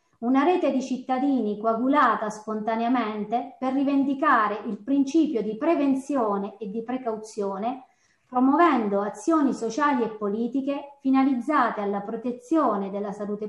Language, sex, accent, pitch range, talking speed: Italian, female, native, 220-275 Hz, 110 wpm